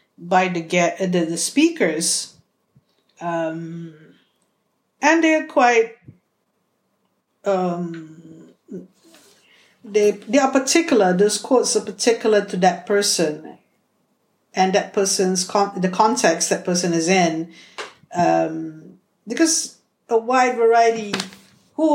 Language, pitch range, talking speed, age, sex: English, 175-215 Hz, 100 wpm, 50-69, female